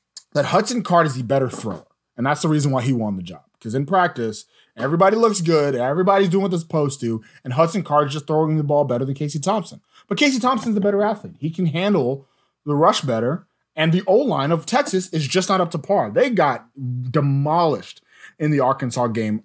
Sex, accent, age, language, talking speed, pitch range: male, American, 20-39, English, 220 wpm, 125-180 Hz